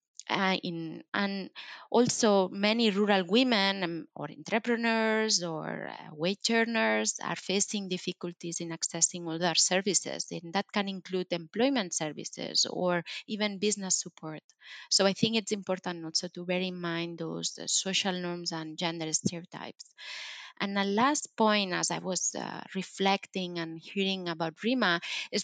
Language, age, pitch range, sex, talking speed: English, 20-39, 170-210 Hz, female, 145 wpm